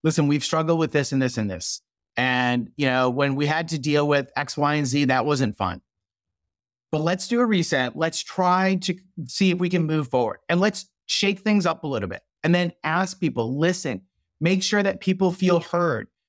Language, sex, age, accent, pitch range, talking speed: English, male, 30-49, American, 150-195 Hz, 215 wpm